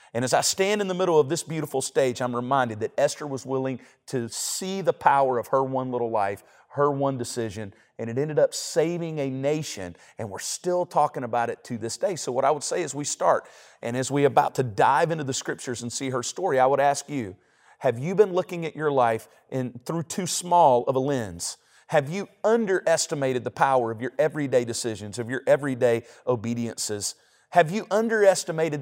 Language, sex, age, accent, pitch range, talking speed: English, male, 40-59, American, 125-175 Hz, 210 wpm